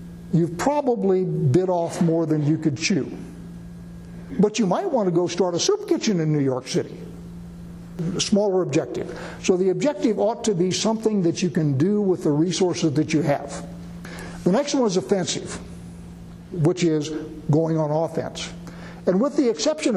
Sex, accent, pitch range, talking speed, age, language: male, American, 150-180 Hz, 170 wpm, 60-79, English